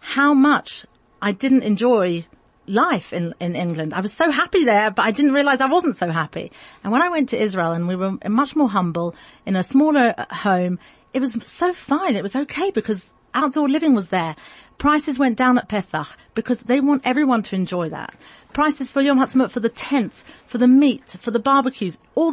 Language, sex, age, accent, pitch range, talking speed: English, female, 40-59, British, 185-265 Hz, 205 wpm